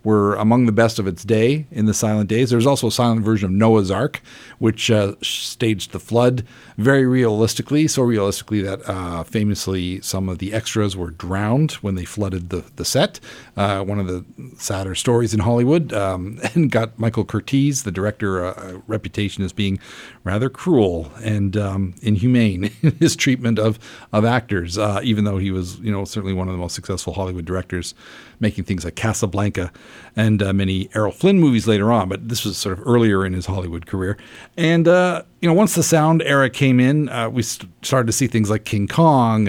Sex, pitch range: male, 95-120 Hz